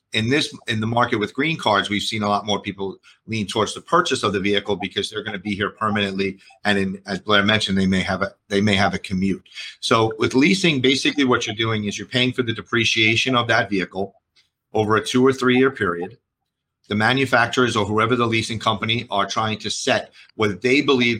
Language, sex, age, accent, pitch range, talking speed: English, male, 40-59, American, 100-120 Hz, 220 wpm